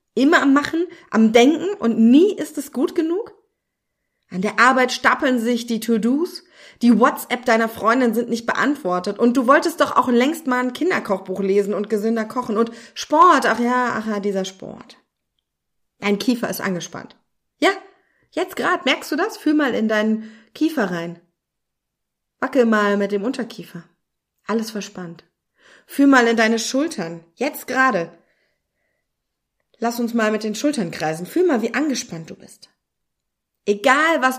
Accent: German